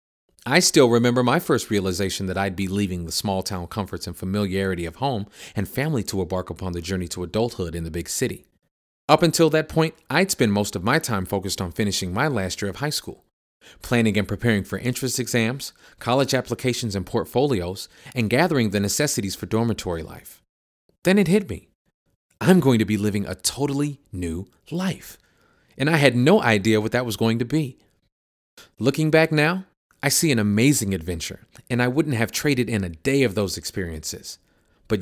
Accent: American